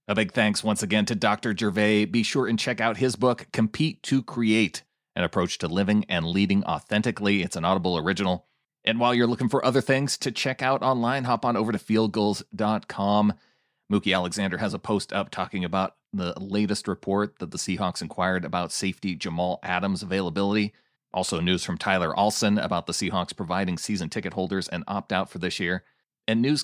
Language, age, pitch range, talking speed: English, 30-49, 95-115 Hz, 190 wpm